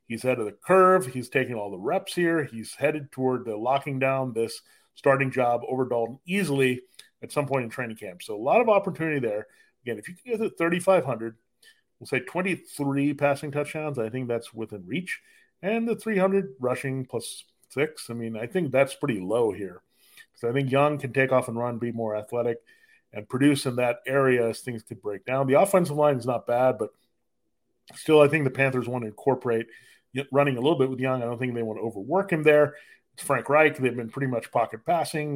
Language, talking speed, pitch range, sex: English, 215 wpm, 120-155 Hz, male